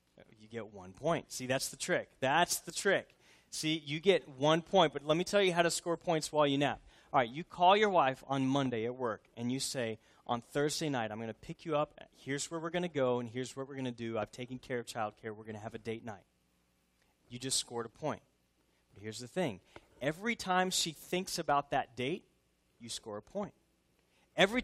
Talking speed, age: 230 wpm, 30-49